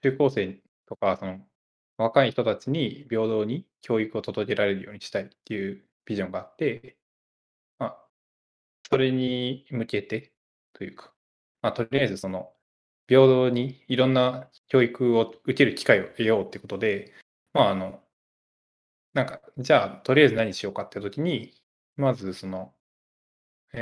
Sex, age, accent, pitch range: male, 20-39, native, 100-130 Hz